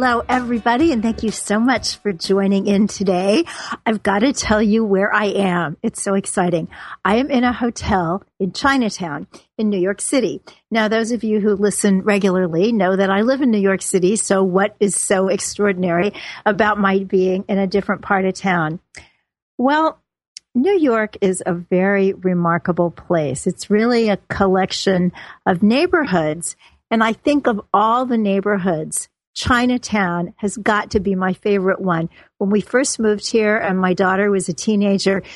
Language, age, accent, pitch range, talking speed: English, 50-69, American, 190-230 Hz, 175 wpm